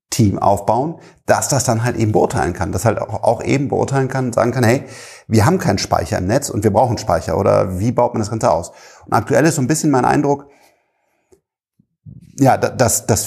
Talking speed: 215 wpm